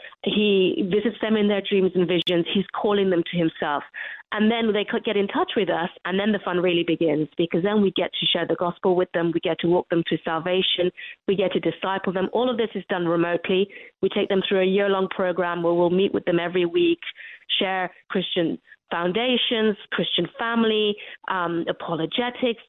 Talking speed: 205 wpm